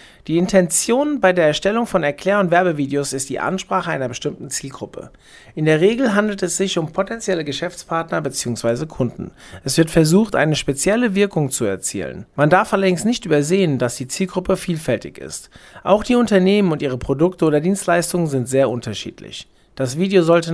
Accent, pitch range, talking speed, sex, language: German, 140-190 Hz, 170 wpm, male, German